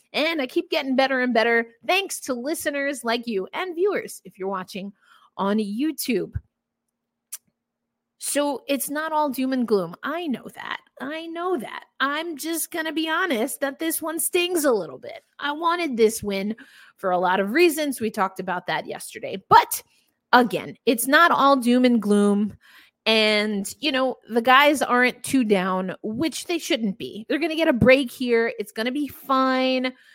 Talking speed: 180 wpm